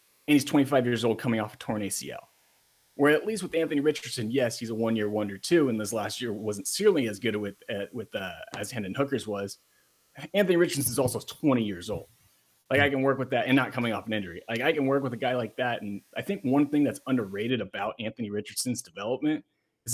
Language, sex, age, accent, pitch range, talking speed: English, male, 30-49, American, 105-130 Hz, 235 wpm